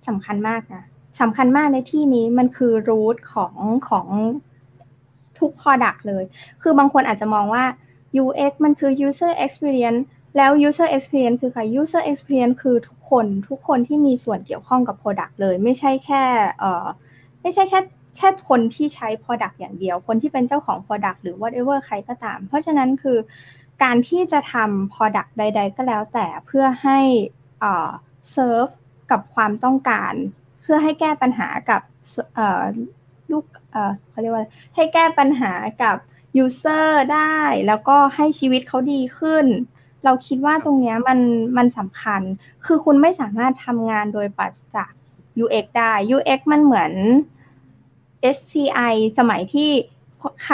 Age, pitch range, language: 20-39, 215-280 Hz, Thai